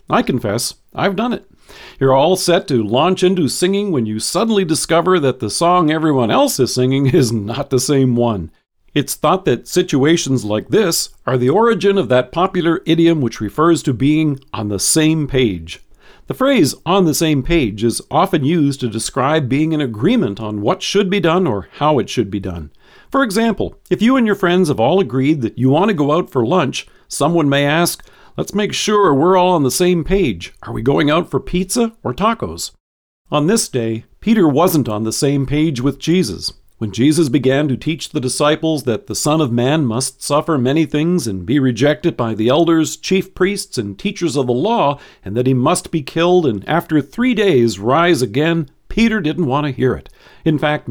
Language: English